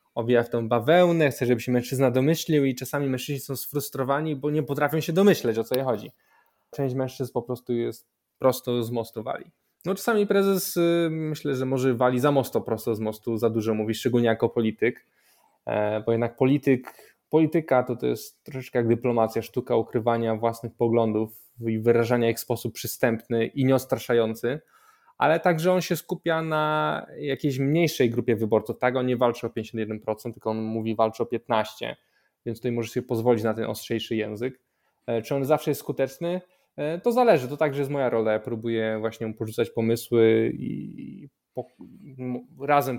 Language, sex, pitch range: Polish, male, 115-145 Hz